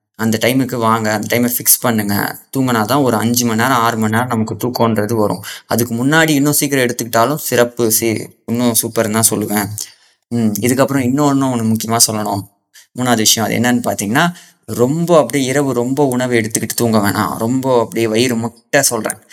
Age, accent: 20-39, native